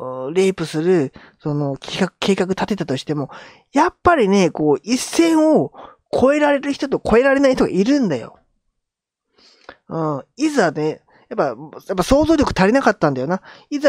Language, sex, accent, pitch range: Japanese, male, native, 155-220 Hz